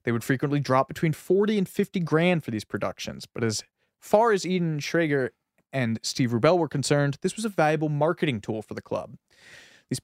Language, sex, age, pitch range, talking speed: English, male, 20-39, 115-165 Hz, 195 wpm